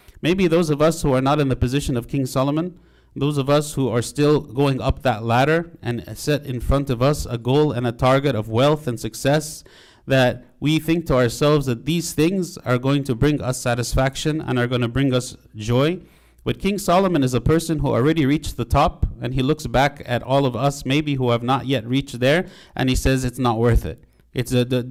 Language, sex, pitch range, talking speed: English, male, 120-150 Hz, 230 wpm